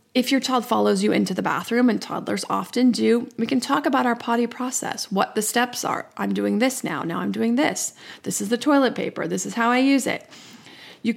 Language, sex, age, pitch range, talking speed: English, female, 30-49, 215-250 Hz, 230 wpm